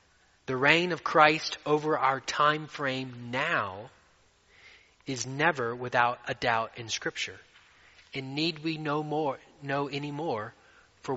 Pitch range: 120-155 Hz